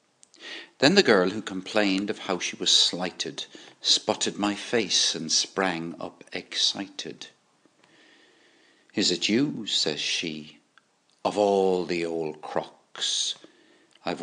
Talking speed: 120 wpm